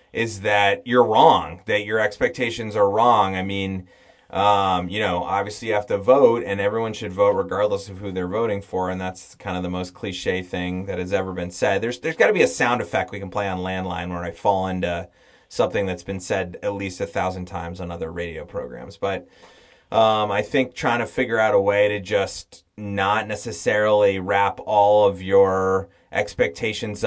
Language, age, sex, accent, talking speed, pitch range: English, 30-49, male, American, 200 wpm, 95-125 Hz